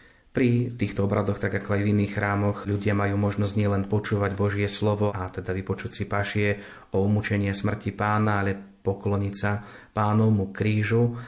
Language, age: Slovak, 30-49